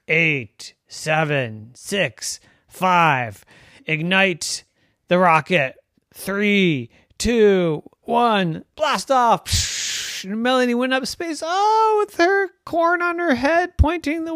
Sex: male